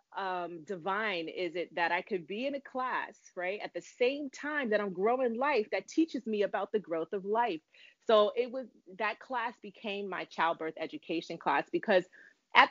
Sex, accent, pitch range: female, American, 175-240 Hz